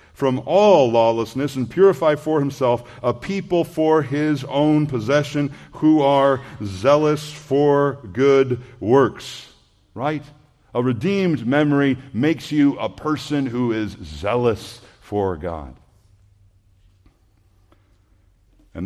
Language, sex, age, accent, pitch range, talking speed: English, male, 50-69, American, 100-135 Hz, 105 wpm